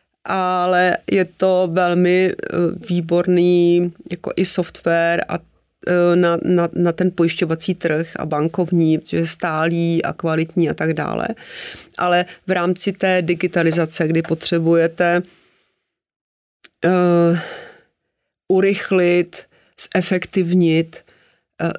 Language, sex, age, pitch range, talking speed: Czech, female, 40-59, 160-175 Hz, 105 wpm